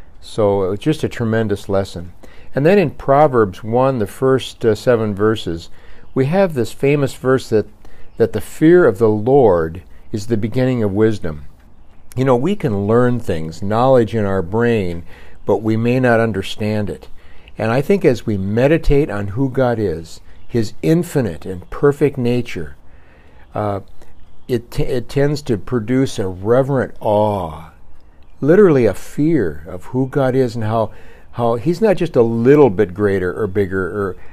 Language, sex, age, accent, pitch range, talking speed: English, male, 60-79, American, 90-125 Hz, 165 wpm